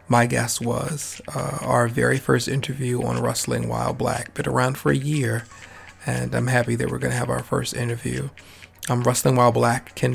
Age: 40-59